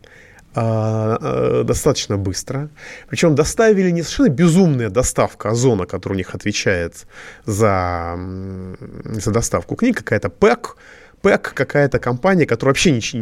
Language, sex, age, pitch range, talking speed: Russian, male, 30-49, 105-170 Hz, 115 wpm